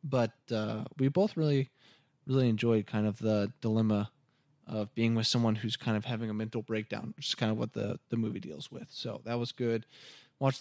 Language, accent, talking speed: English, American, 210 wpm